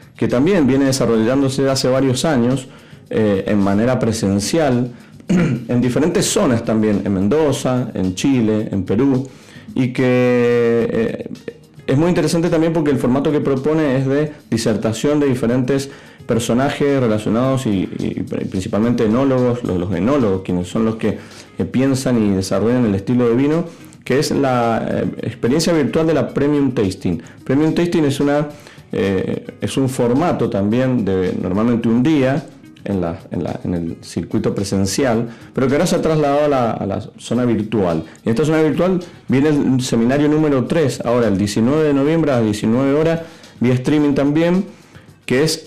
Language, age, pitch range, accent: Spanish, 30-49, 115-145 Hz, Argentinian